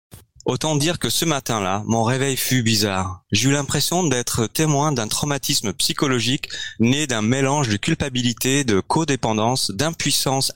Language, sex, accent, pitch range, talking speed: French, male, French, 110-140 Hz, 140 wpm